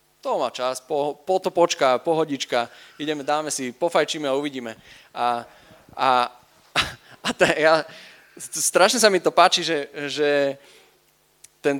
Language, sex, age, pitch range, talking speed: Slovak, male, 20-39, 130-155 Hz, 135 wpm